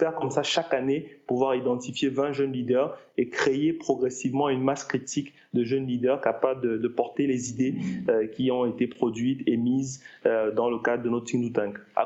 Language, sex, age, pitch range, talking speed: French, male, 30-49, 125-145 Hz, 200 wpm